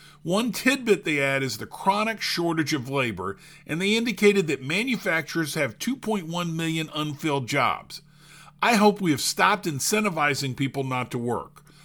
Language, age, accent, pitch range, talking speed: English, 50-69, American, 145-185 Hz, 150 wpm